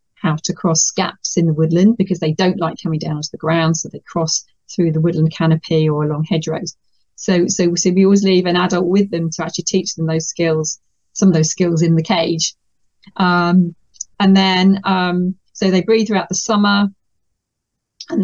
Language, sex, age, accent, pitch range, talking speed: English, female, 40-59, British, 160-185 Hz, 195 wpm